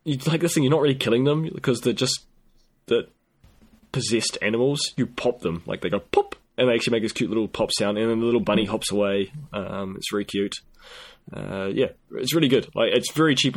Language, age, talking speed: English, 20-39, 230 wpm